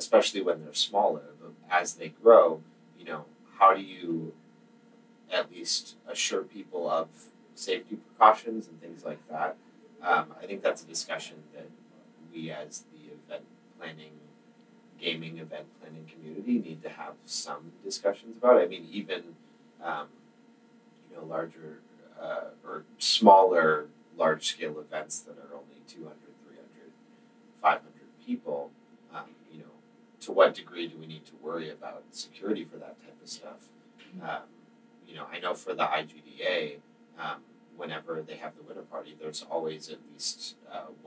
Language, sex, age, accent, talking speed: English, male, 30-49, American, 150 wpm